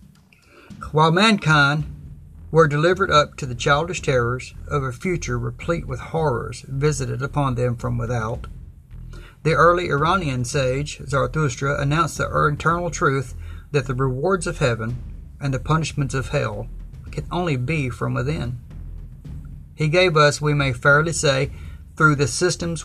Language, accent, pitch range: English, American, 120-150 Hz